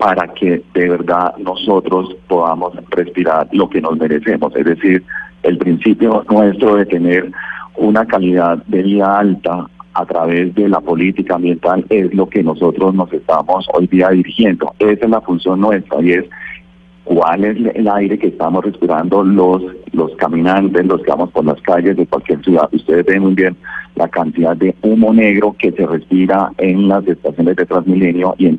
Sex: male